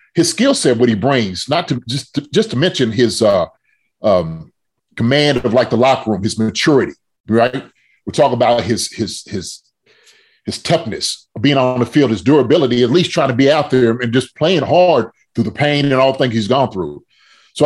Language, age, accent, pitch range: English, 30-49, American, 115-145 Hz